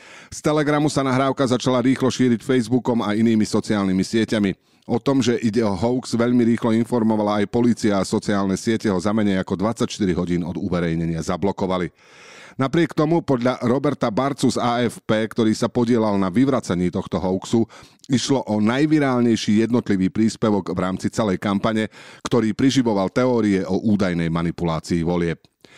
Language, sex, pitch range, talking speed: Slovak, male, 95-120 Hz, 150 wpm